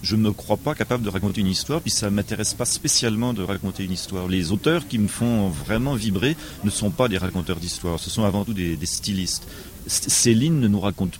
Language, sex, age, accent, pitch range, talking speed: French, male, 40-59, French, 90-115 Hz, 240 wpm